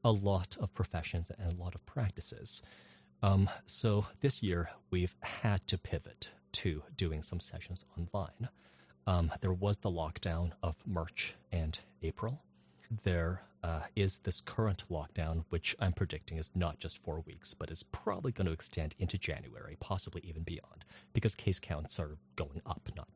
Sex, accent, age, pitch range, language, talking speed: male, American, 30-49, 80-100 Hz, English, 165 wpm